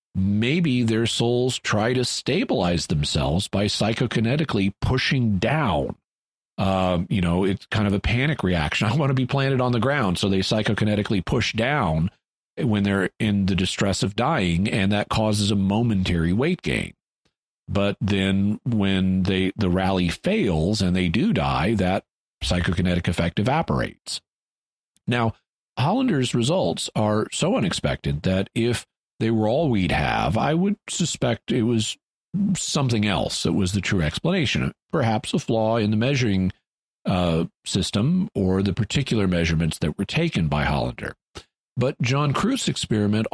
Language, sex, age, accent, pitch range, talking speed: English, male, 40-59, American, 95-120 Hz, 150 wpm